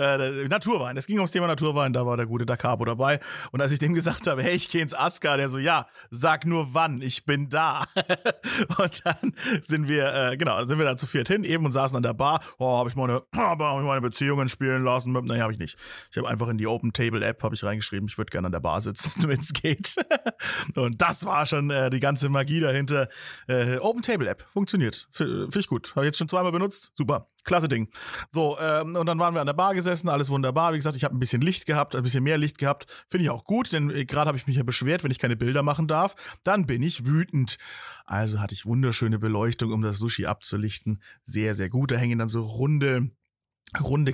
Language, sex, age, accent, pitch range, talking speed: German, male, 30-49, German, 125-165 Hz, 240 wpm